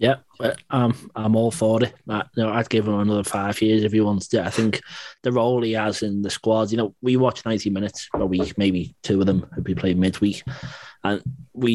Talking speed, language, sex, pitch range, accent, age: 235 wpm, English, male, 100-110 Hz, British, 20-39